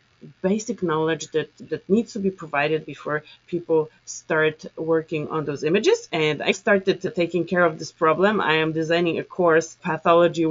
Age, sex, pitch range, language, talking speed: 30-49, female, 155-185 Hz, English, 165 wpm